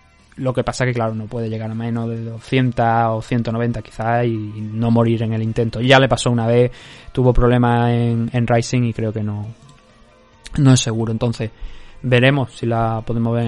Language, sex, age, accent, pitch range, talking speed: Spanish, male, 20-39, Spanish, 115-145 Hz, 210 wpm